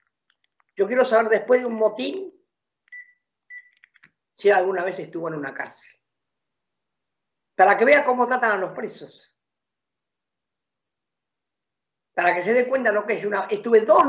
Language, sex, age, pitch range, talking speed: Spanish, female, 50-69, 155-220 Hz, 140 wpm